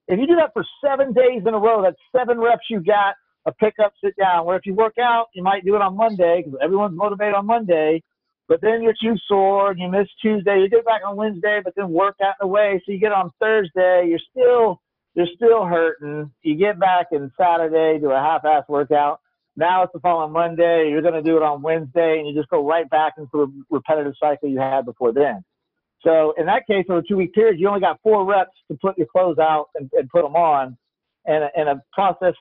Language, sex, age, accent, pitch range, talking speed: English, male, 50-69, American, 145-195 Hz, 235 wpm